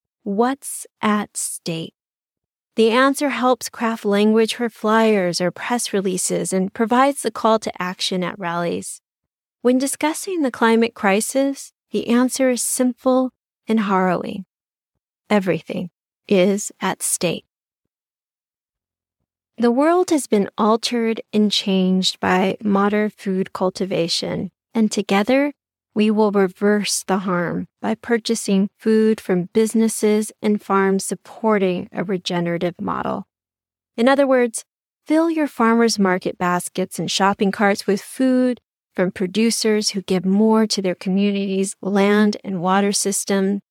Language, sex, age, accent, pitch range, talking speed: English, female, 30-49, American, 195-235 Hz, 125 wpm